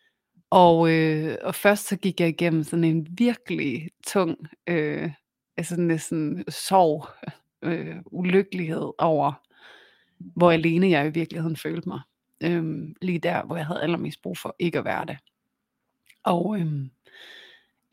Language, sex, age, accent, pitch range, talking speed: Danish, female, 30-49, native, 160-185 Hz, 145 wpm